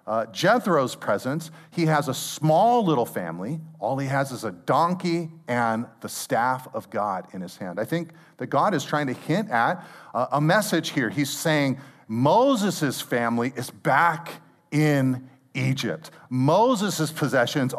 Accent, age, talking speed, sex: American, 40-59, 155 wpm, male